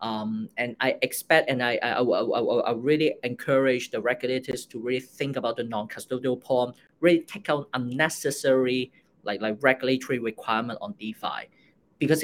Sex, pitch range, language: male, 125-160 Hz, English